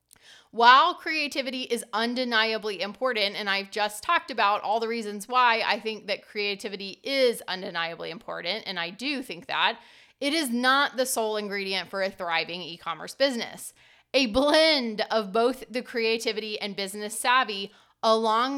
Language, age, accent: English, 30-49, American